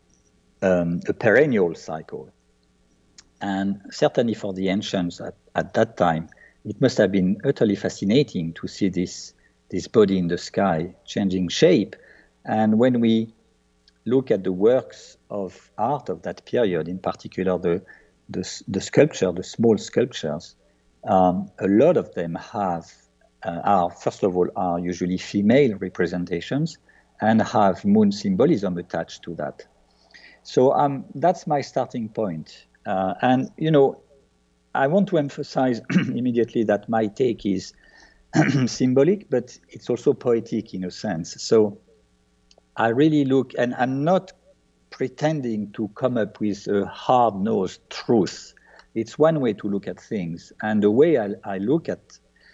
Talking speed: 145 wpm